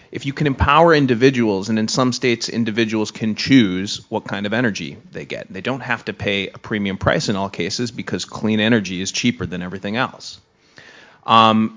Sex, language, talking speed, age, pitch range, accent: male, English, 195 wpm, 30-49, 100-115 Hz, American